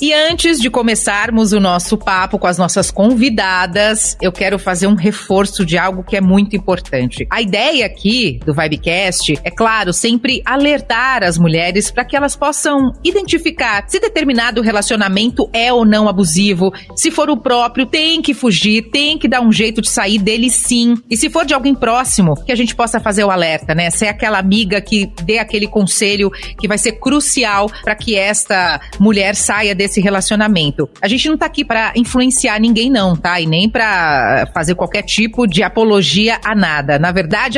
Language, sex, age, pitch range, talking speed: Portuguese, female, 40-59, 195-245 Hz, 185 wpm